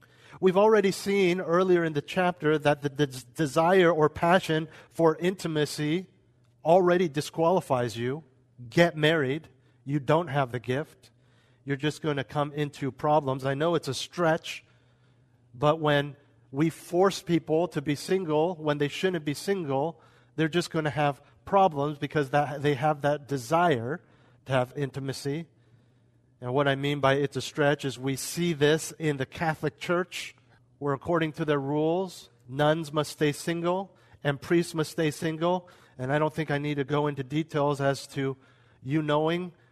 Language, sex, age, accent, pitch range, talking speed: English, male, 40-59, American, 130-160 Hz, 160 wpm